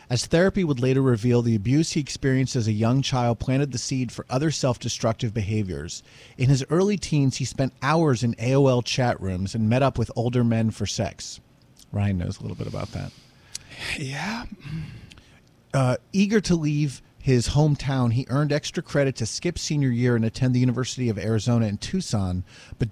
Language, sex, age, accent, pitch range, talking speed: English, male, 40-59, American, 115-140 Hz, 185 wpm